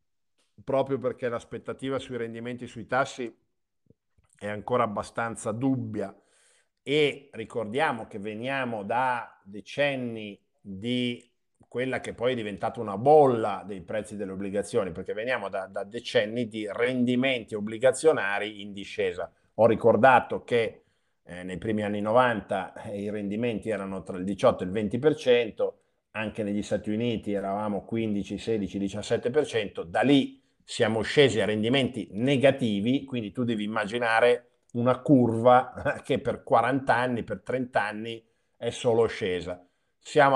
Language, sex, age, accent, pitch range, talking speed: Italian, male, 50-69, native, 105-135 Hz, 130 wpm